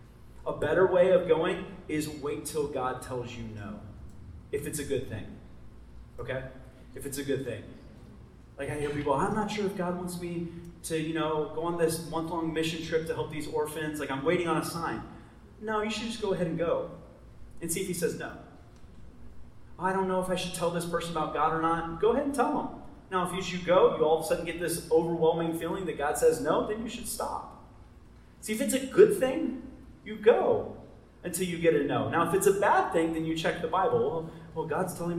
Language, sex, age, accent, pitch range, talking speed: English, male, 30-49, American, 135-175 Hz, 230 wpm